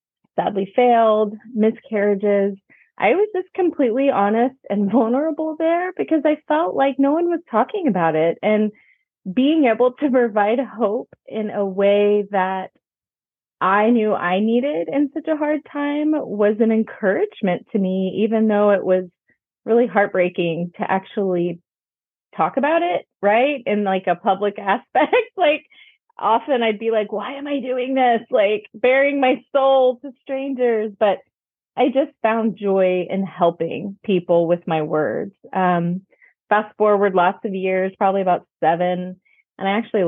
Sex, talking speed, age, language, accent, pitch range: female, 150 wpm, 30-49, English, American, 185-255 Hz